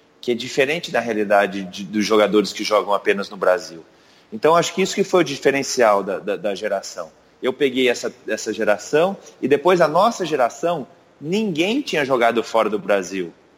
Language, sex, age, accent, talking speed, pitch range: Portuguese, male, 40-59, Brazilian, 175 wpm, 120-180 Hz